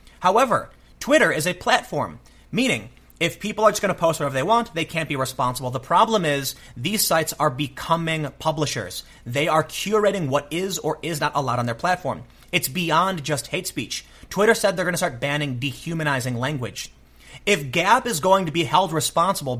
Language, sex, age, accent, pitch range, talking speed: English, male, 30-49, American, 130-180 Hz, 190 wpm